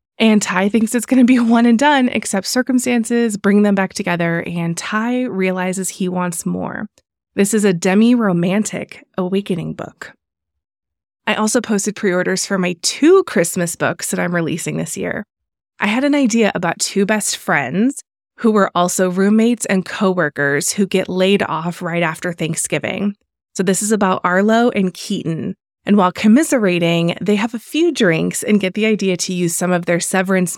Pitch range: 180-220 Hz